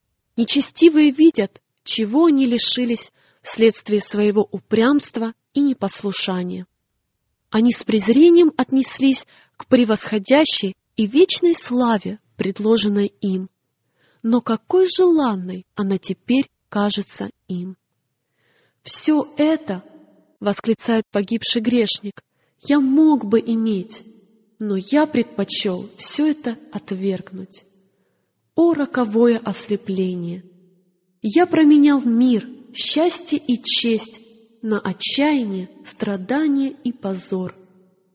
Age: 20-39